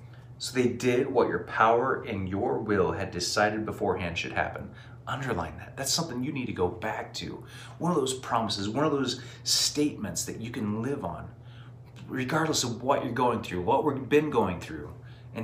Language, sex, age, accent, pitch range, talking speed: English, male, 30-49, American, 105-125 Hz, 190 wpm